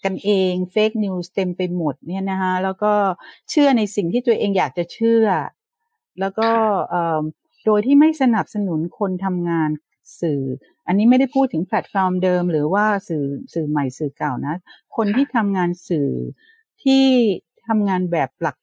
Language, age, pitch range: Thai, 60-79, 170-235 Hz